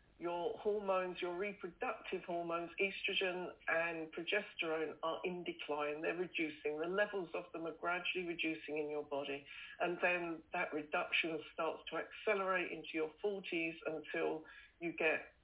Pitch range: 160-195 Hz